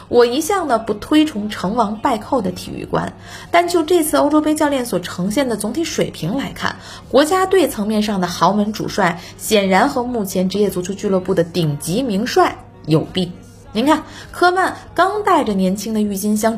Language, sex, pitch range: Chinese, female, 190-300 Hz